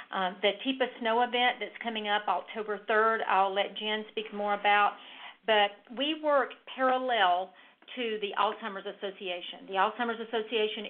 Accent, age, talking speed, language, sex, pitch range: American, 50-69, 150 wpm, English, female, 195-230 Hz